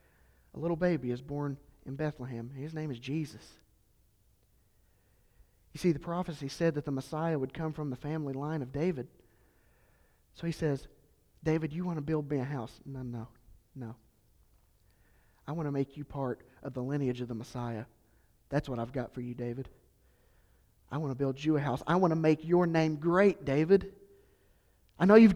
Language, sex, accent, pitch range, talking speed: English, male, American, 120-155 Hz, 185 wpm